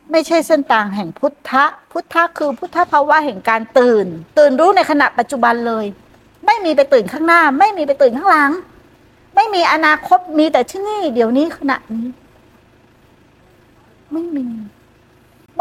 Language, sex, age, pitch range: Thai, female, 60-79, 215-295 Hz